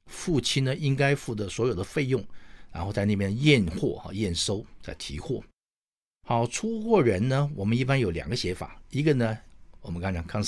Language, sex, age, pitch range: Chinese, male, 60-79, 100-145 Hz